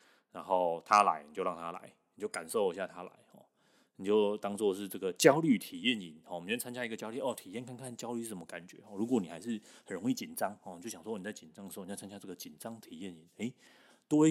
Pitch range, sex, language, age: 90-130 Hz, male, Chinese, 30-49